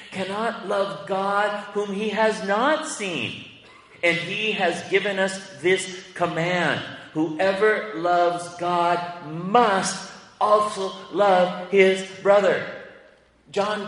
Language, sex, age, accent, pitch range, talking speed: English, male, 40-59, American, 170-220 Hz, 105 wpm